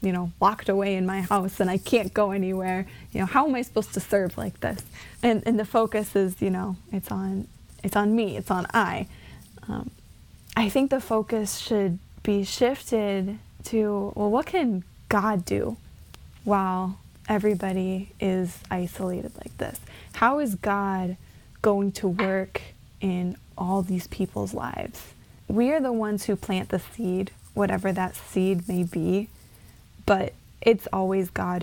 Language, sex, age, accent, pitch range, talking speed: English, female, 10-29, American, 185-215 Hz, 160 wpm